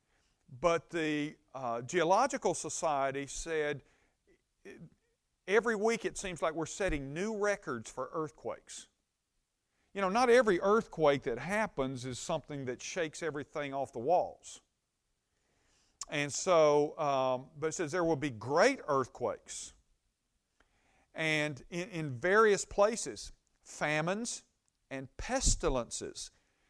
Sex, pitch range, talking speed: male, 140-185 Hz, 115 wpm